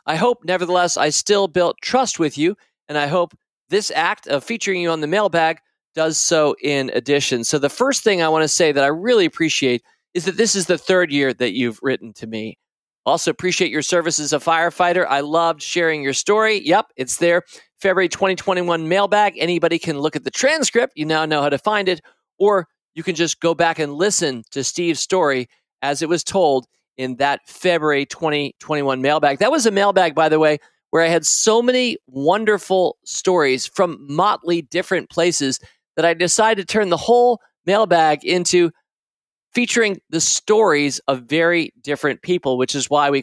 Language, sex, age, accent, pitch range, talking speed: English, male, 40-59, American, 140-185 Hz, 190 wpm